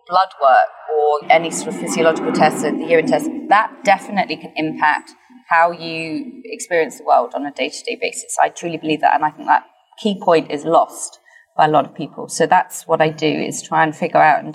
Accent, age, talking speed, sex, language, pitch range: British, 30-49, 220 wpm, female, English, 155-190 Hz